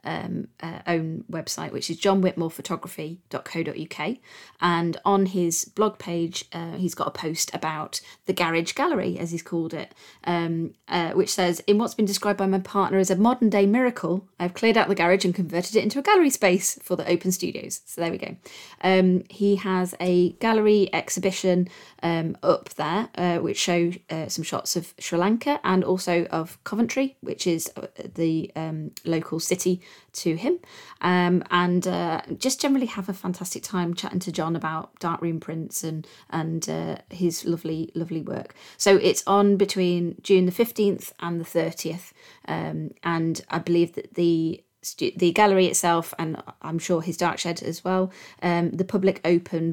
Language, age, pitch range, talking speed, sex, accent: English, 30-49, 165-195 Hz, 175 wpm, female, British